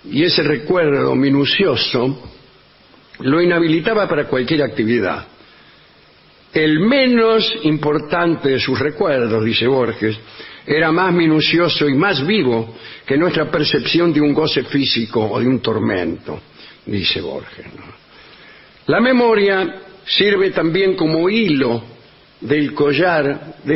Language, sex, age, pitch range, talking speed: English, male, 60-79, 125-170 Hz, 115 wpm